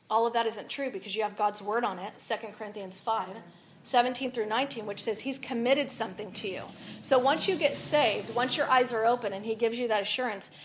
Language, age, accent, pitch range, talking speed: English, 40-59, American, 210-255 Hz, 230 wpm